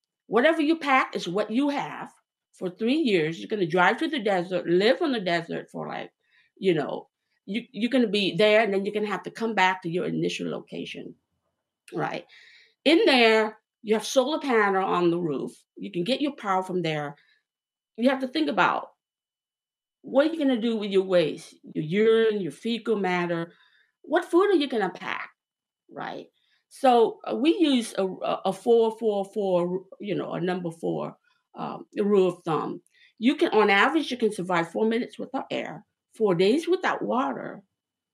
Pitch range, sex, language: 195-285 Hz, female, English